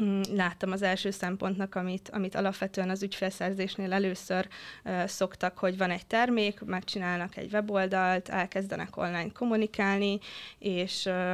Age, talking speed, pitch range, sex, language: 20-39, 120 wpm, 185-210 Hz, female, Hungarian